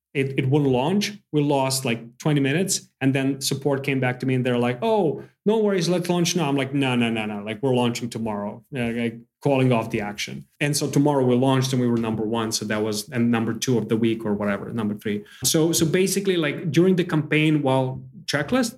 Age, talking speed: 30-49, 235 wpm